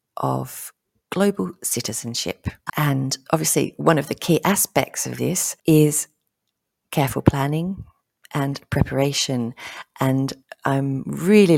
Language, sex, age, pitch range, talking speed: English, female, 40-59, 130-150 Hz, 105 wpm